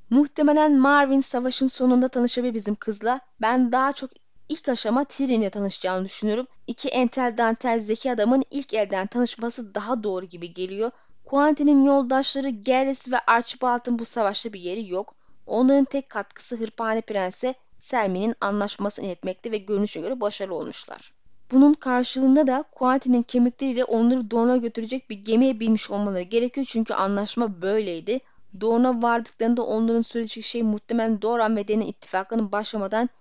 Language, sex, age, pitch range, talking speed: Turkish, female, 10-29, 210-255 Hz, 140 wpm